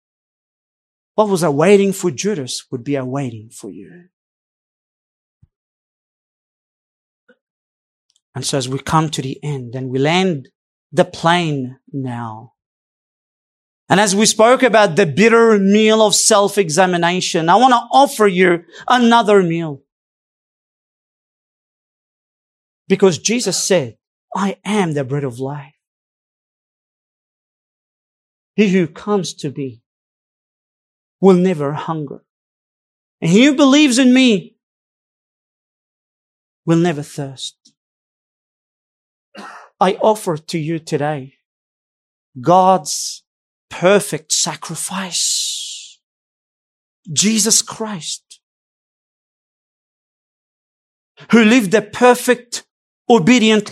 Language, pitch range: English, 145-215 Hz